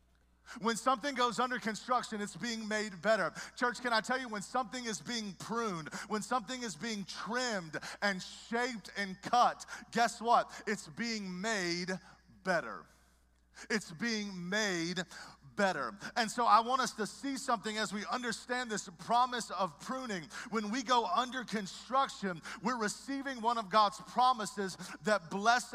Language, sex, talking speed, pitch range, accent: English, male, 155 wpm, 180-230 Hz, American